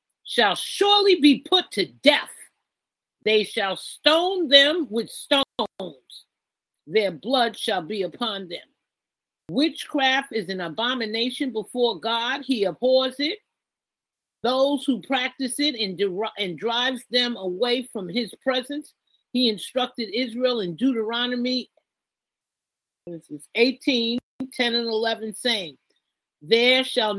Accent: American